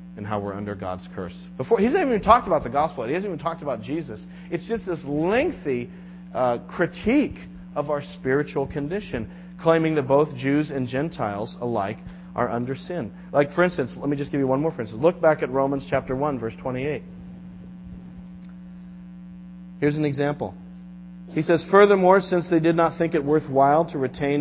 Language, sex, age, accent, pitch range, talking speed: English, male, 40-59, American, 140-180 Hz, 180 wpm